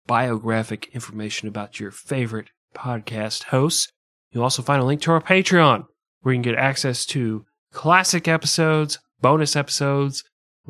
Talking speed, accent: 145 wpm, American